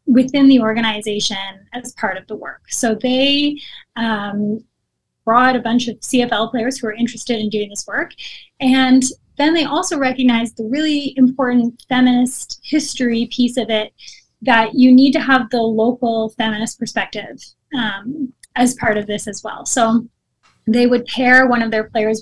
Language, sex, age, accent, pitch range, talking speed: English, female, 10-29, American, 210-255 Hz, 165 wpm